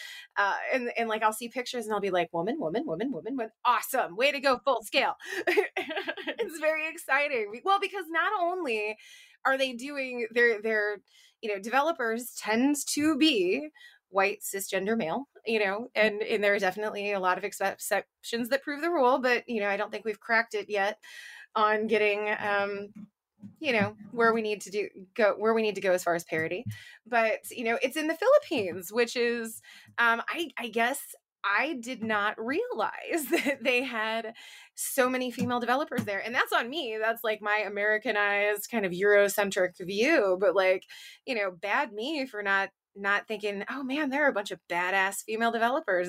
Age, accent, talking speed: 20-39, American, 185 wpm